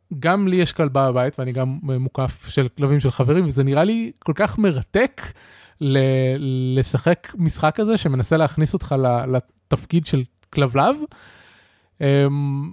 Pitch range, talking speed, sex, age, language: 135-180 Hz, 135 wpm, male, 20-39, Hebrew